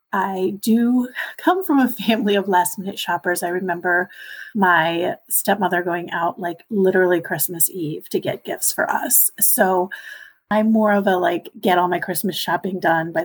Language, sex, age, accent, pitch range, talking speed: English, female, 30-49, American, 185-225 Hz, 170 wpm